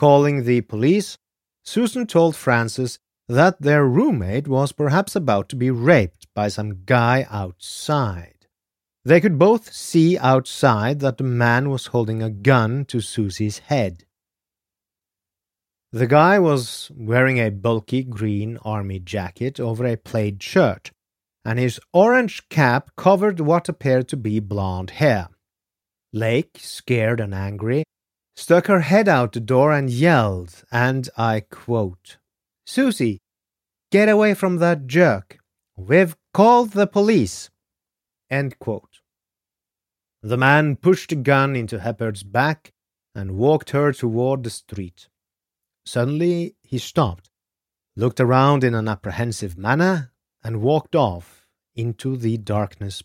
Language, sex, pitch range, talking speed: English, male, 100-145 Hz, 130 wpm